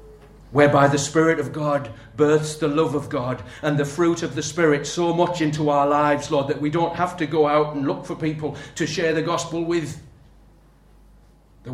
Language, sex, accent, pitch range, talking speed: English, male, British, 110-150 Hz, 200 wpm